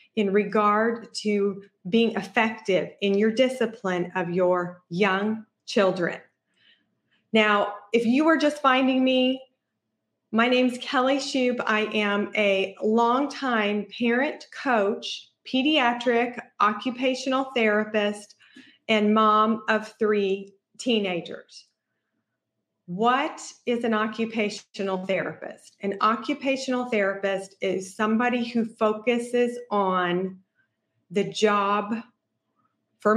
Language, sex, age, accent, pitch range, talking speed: English, female, 30-49, American, 195-235 Hz, 95 wpm